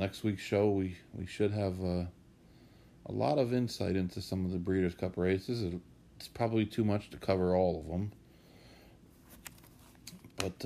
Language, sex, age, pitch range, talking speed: English, male, 40-59, 90-110 Hz, 170 wpm